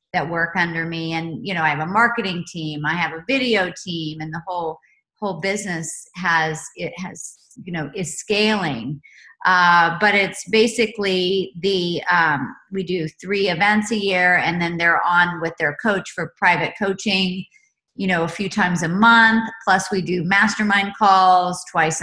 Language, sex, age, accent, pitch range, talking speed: English, female, 40-59, American, 165-205 Hz, 175 wpm